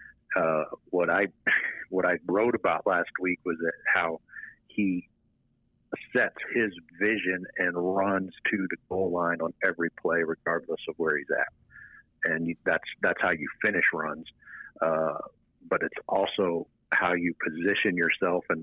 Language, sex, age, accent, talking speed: English, male, 50-69, American, 150 wpm